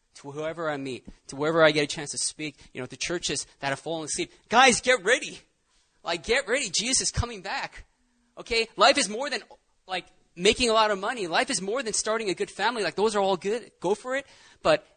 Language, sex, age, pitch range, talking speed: English, male, 20-39, 155-230 Hz, 235 wpm